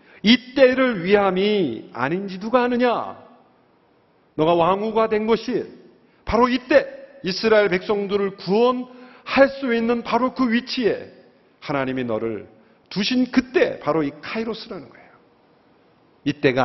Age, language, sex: 50-69, Korean, male